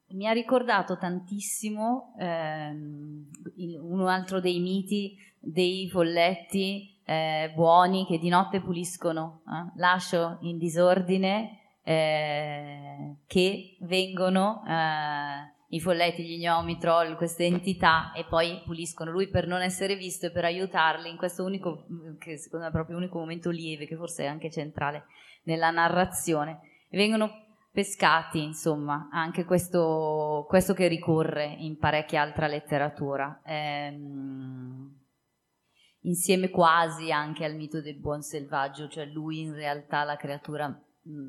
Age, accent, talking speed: 20-39, native, 130 wpm